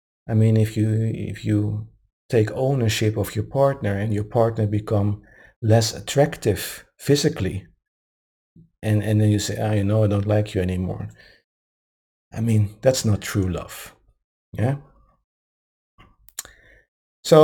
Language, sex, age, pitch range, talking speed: English, male, 50-69, 100-115 Hz, 140 wpm